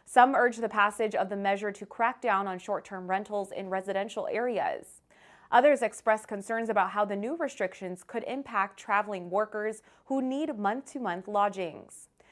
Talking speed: 155 wpm